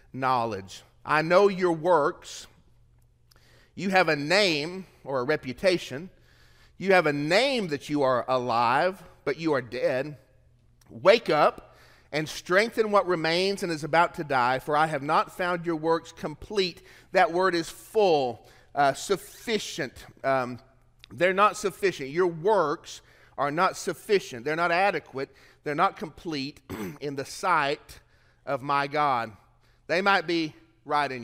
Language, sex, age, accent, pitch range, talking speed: English, male, 40-59, American, 130-195 Hz, 145 wpm